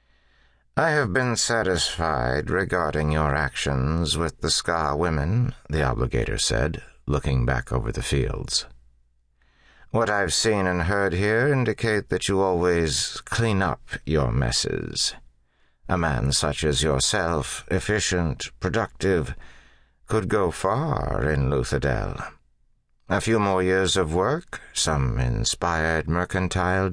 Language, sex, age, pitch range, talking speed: English, male, 60-79, 65-95 Hz, 120 wpm